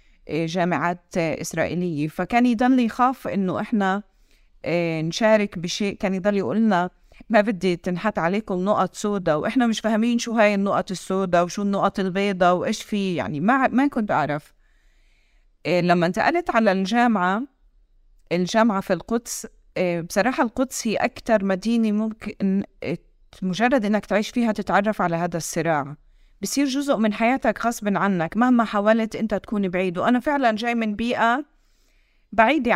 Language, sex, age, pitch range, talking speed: Arabic, female, 30-49, 180-230 Hz, 140 wpm